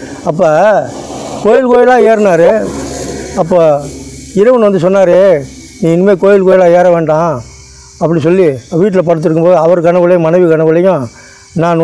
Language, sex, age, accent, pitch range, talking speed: Tamil, male, 60-79, native, 170-215 Hz, 115 wpm